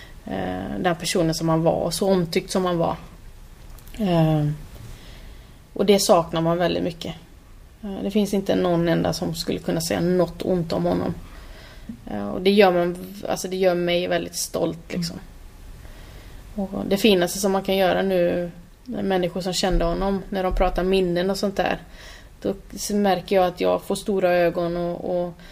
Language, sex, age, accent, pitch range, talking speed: Swedish, female, 20-39, native, 165-195 Hz, 165 wpm